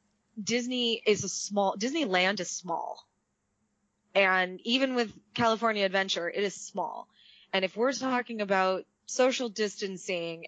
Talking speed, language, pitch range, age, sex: 125 wpm, English, 195-245 Hz, 20-39, female